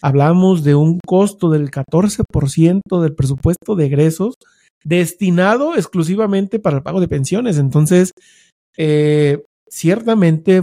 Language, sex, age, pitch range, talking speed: English, male, 40-59, 150-185 Hz, 120 wpm